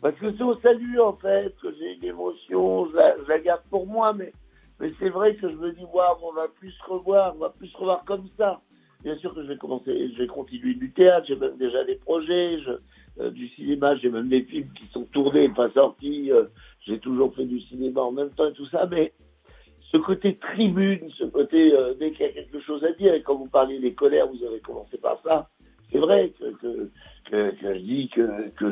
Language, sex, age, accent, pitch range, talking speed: French, male, 60-79, French, 125-200 Hz, 240 wpm